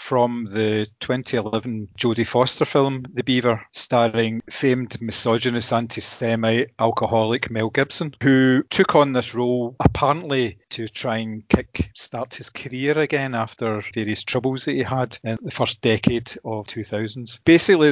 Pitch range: 110-130 Hz